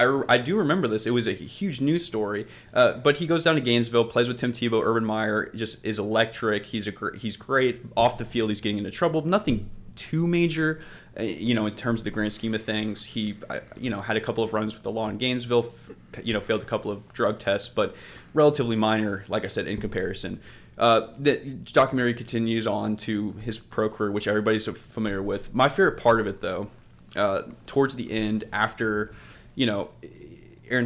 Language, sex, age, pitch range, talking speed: English, male, 20-39, 105-120 Hz, 220 wpm